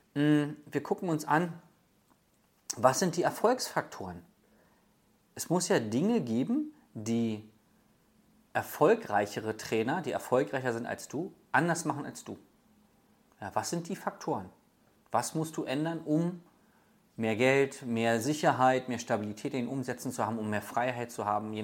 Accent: German